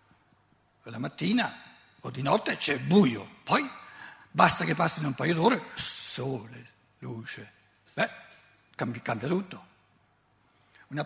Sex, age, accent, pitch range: male, 60-79, native, 120-185 Hz